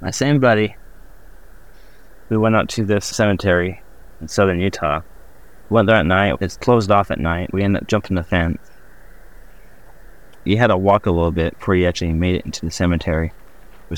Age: 30-49